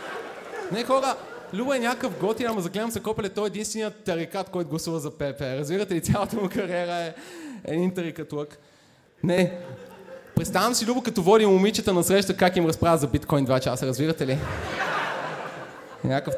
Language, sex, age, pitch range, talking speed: Bulgarian, male, 20-39, 145-185 Hz, 165 wpm